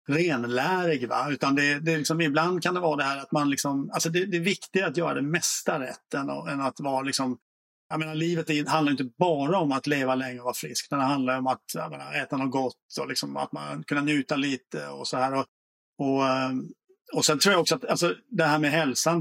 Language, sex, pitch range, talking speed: Swedish, male, 135-160 Hz, 240 wpm